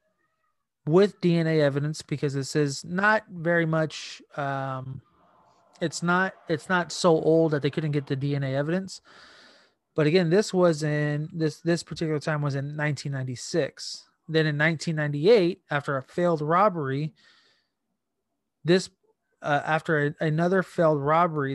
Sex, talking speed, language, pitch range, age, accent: male, 135 wpm, English, 145-170 Hz, 30-49, American